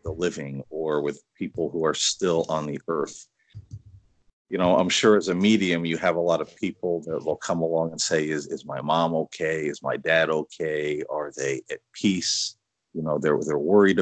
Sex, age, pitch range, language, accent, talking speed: male, 40-59, 80-105 Hz, English, American, 205 wpm